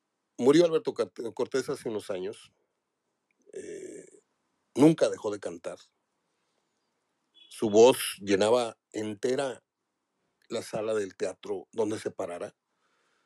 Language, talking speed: Spanish, 100 wpm